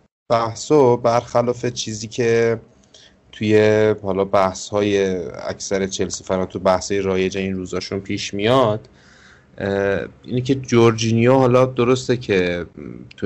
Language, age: Persian, 30-49